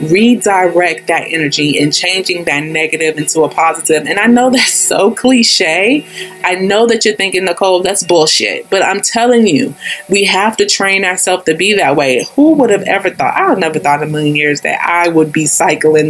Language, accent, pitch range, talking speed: English, American, 160-205 Hz, 205 wpm